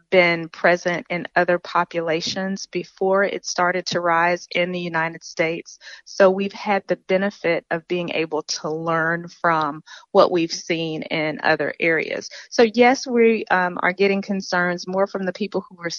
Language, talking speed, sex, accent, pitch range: English, 165 wpm, female, American, 170-200 Hz